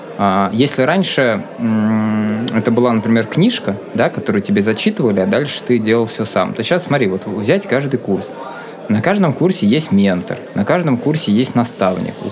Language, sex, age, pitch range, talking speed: Russian, male, 20-39, 105-145 Hz, 160 wpm